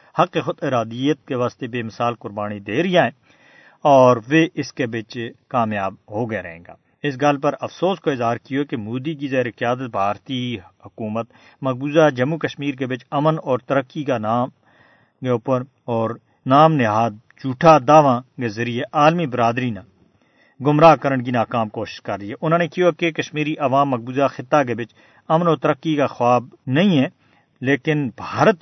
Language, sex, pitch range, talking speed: Urdu, male, 120-155 Hz, 175 wpm